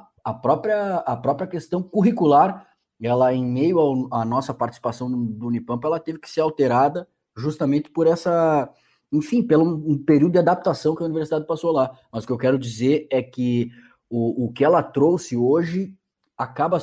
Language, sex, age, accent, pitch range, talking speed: Portuguese, male, 20-39, Brazilian, 120-155 Hz, 170 wpm